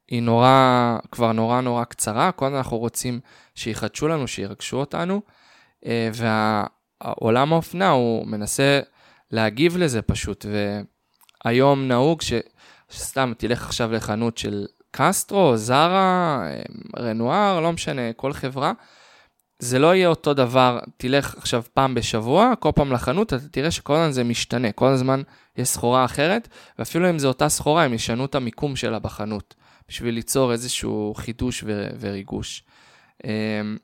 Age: 20-39